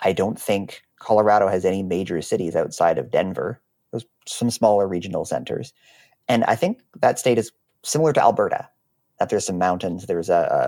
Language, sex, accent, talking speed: English, male, American, 180 wpm